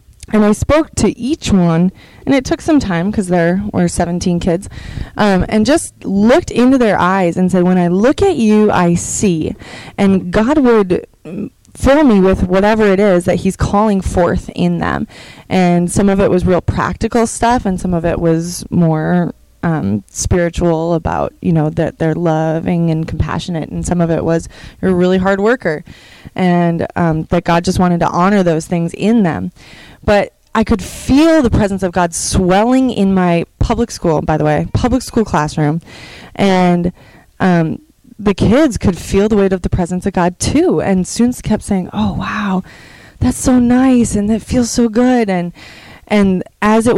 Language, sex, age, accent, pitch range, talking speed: English, female, 20-39, American, 170-215 Hz, 185 wpm